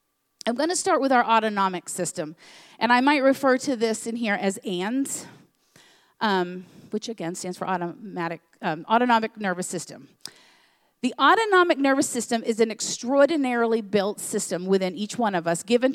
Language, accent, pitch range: English, American, 195-245 Hz